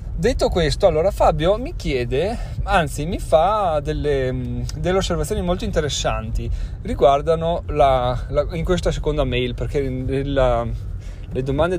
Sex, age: male, 30-49